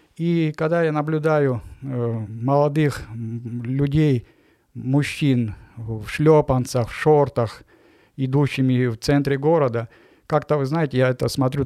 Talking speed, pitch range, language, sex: 110 wpm, 120-145 Hz, Ukrainian, male